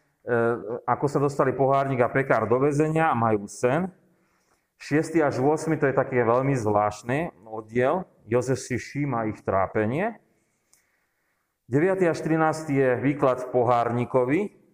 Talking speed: 130 wpm